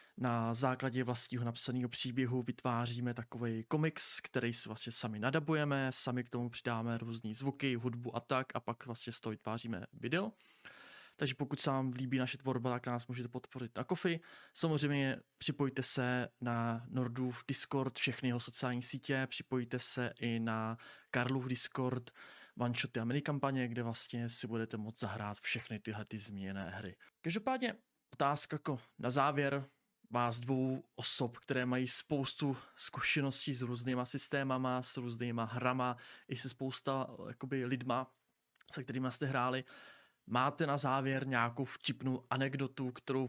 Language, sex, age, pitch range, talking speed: Czech, male, 20-39, 120-135 Hz, 150 wpm